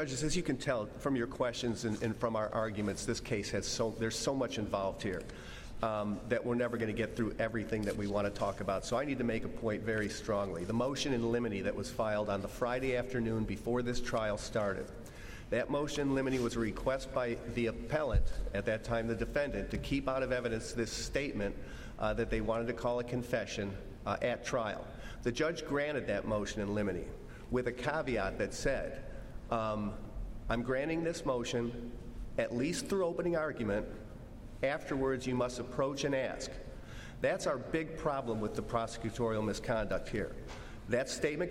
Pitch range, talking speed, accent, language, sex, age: 110-130 Hz, 190 wpm, American, English, male, 40-59